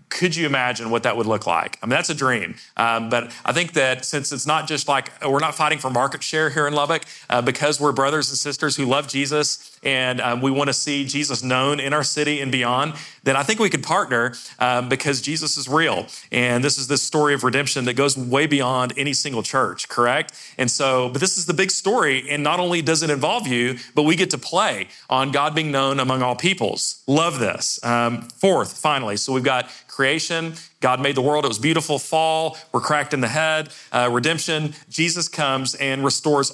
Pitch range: 125-150 Hz